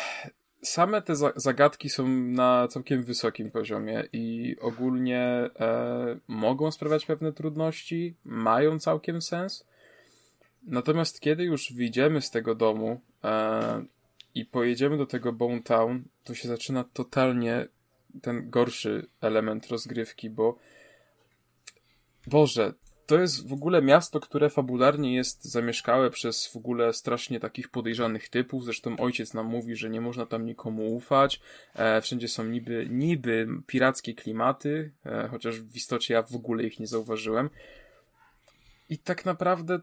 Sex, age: male, 20-39